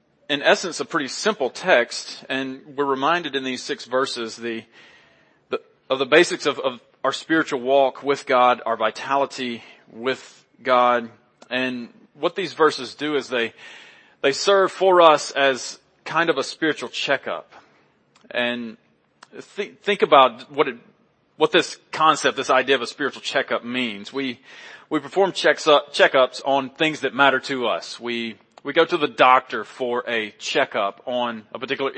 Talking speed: 160 wpm